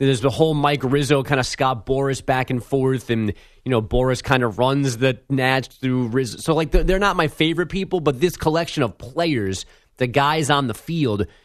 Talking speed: 210 wpm